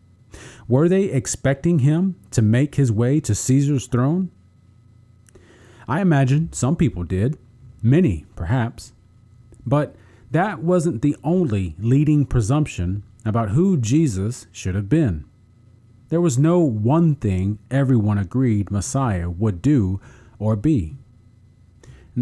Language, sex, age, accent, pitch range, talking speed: English, male, 40-59, American, 105-135 Hz, 120 wpm